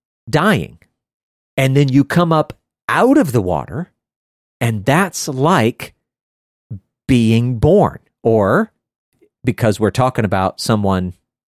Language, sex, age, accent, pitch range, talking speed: English, male, 40-59, American, 115-160 Hz, 110 wpm